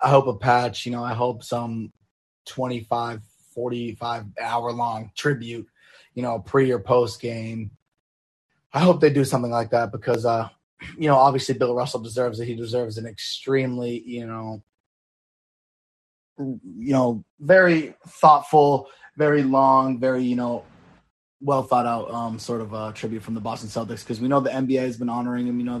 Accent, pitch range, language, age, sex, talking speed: American, 115-130 Hz, English, 20-39, male, 170 wpm